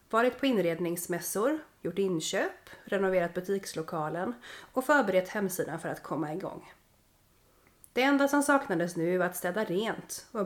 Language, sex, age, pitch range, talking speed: Swedish, female, 30-49, 170-230 Hz, 140 wpm